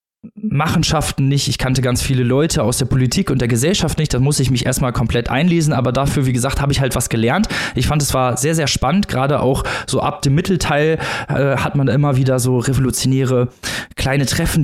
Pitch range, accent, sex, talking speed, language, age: 115-145 Hz, German, male, 215 wpm, German, 20-39